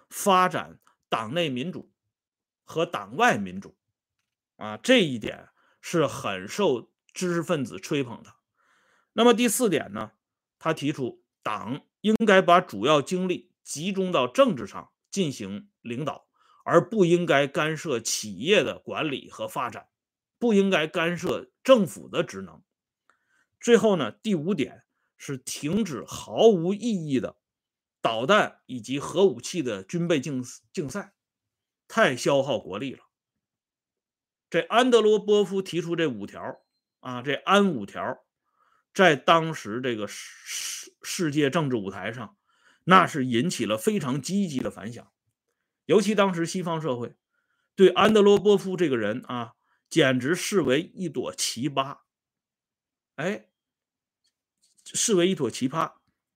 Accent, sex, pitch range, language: Chinese, male, 140-205 Hz, Swedish